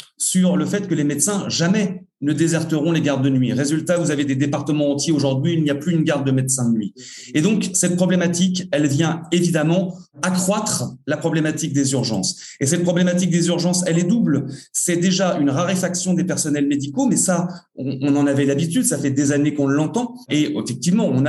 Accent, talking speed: French, 205 wpm